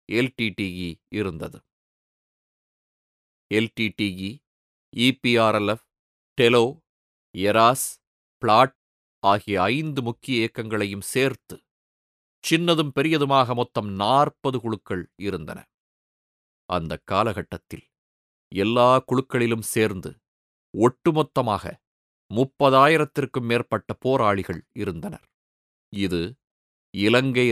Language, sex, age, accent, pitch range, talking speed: Tamil, male, 30-49, native, 100-135 Hz, 65 wpm